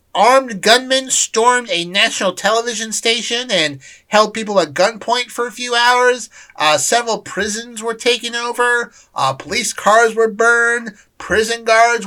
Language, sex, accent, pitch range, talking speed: English, male, American, 155-225 Hz, 145 wpm